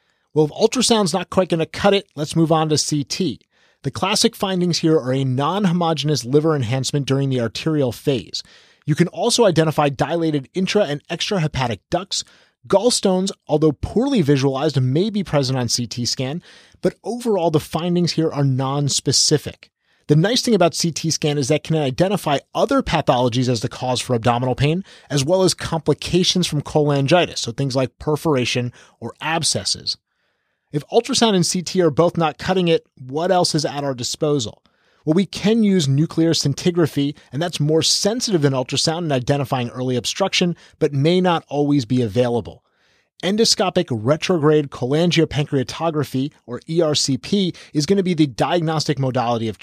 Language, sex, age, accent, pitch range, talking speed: English, male, 30-49, American, 135-175 Hz, 160 wpm